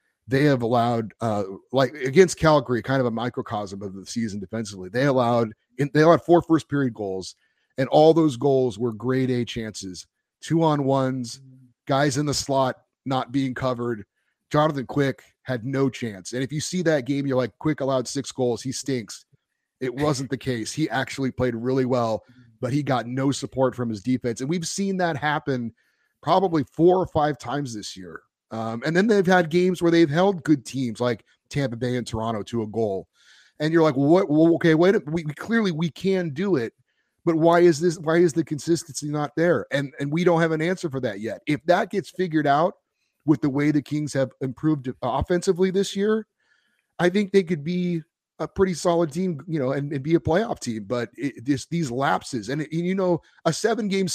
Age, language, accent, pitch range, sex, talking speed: 30-49, English, American, 125-170 Hz, male, 205 wpm